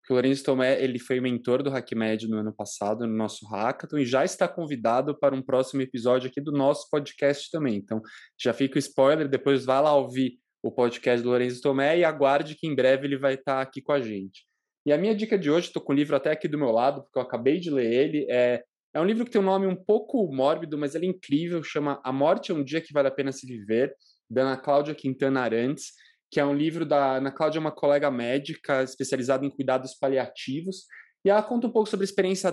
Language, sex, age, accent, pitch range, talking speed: Portuguese, male, 20-39, Brazilian, 130-155 Hz, 240 wpm